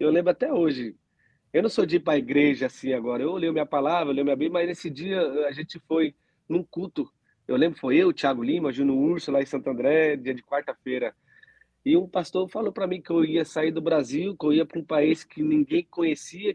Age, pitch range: 30-49, 145-190 Hz